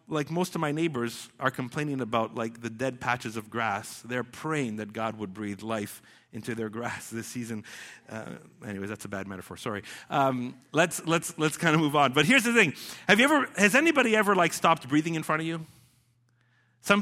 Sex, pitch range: male, 125-180 Hz